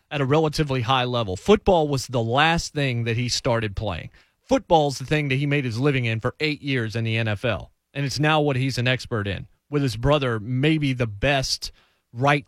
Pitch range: 120-165 Hz